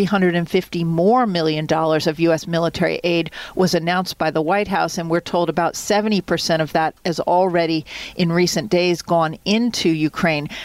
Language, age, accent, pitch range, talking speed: English, 50-69, American, 160-180 Hz, 165 wpm